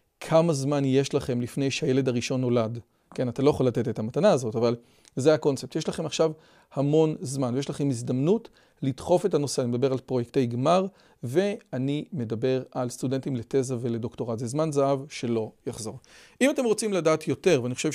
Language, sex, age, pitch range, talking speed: Hebrew, male, 40-59, 130-180 Hz, 175 wpm